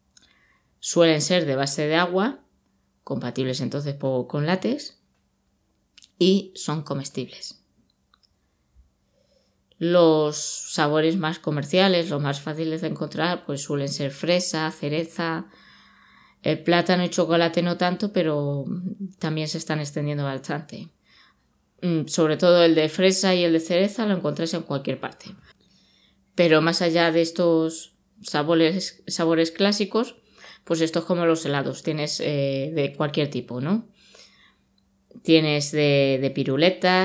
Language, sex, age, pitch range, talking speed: Spanish, female, 20-39, 140-175 Hz, 125 wpm